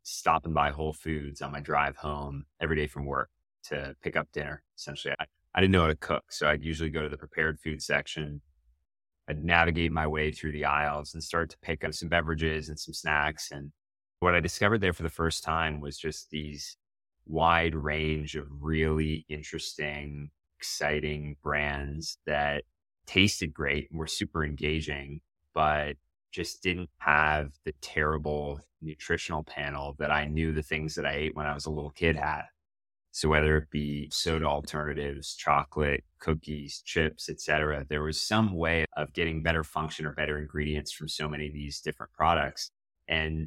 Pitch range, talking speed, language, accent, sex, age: 75-80 Hz, 180 wpm, English, American, male, 20-39